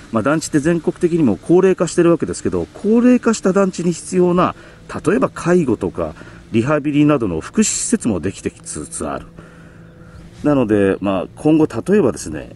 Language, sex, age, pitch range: Japanese, male, 40-59, 105-175 Hz